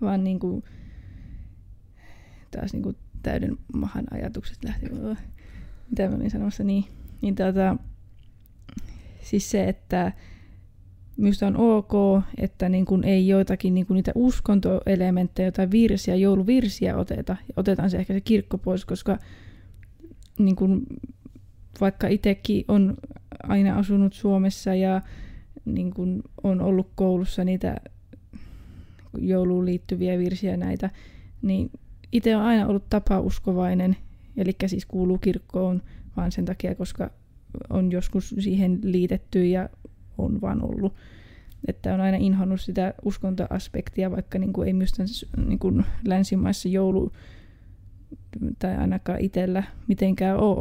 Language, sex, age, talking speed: Finnish, female, 20-39, 115 wpm